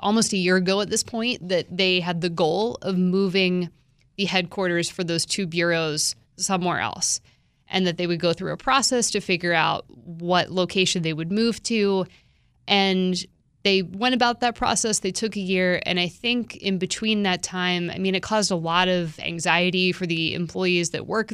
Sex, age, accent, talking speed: female, 20-39, American, 195 wpm